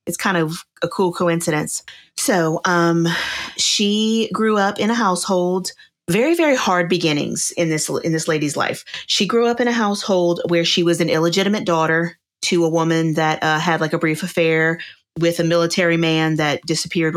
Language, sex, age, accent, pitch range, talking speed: English, female, 30-49, American, 155-180 Hz, 180 wpm